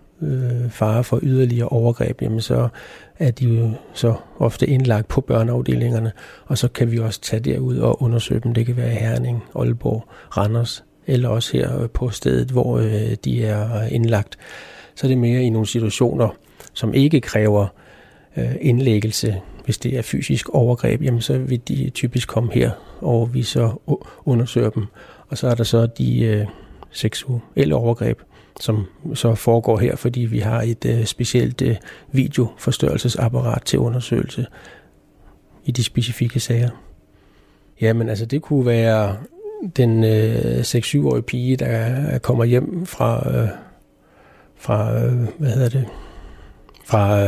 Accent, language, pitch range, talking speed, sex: native, Danish, 110-125 Hz, 145 wpm, male